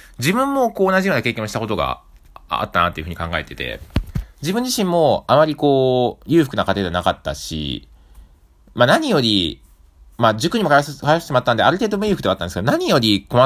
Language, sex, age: Japanese, male, 20-39